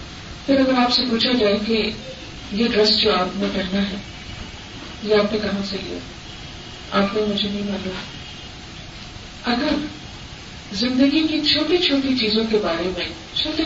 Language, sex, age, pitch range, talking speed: Urdu, female, 40-59, 200-260 Hz, 155 wpm